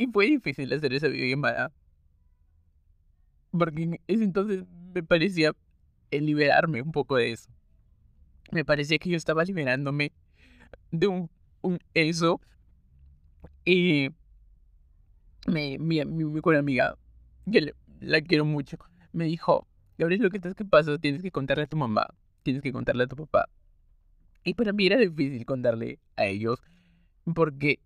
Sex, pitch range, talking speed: male, 95-160 Hz, 145 wpm